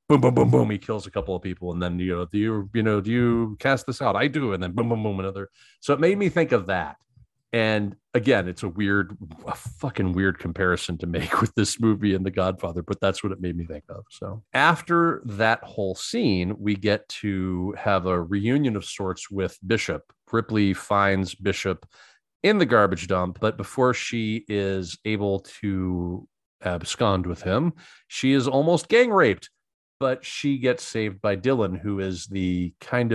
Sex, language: male, English